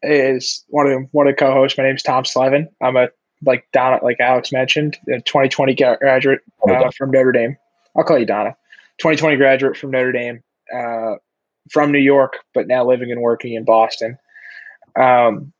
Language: English